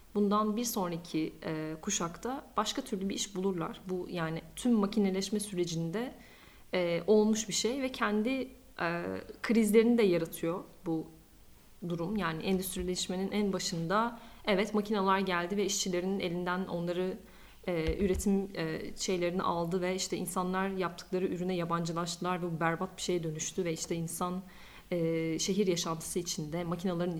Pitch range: 175-225 Hz